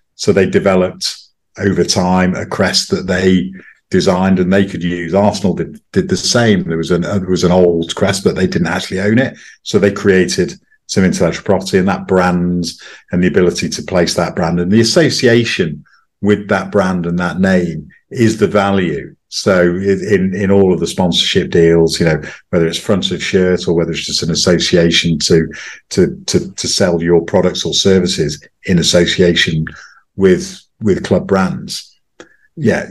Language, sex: English, male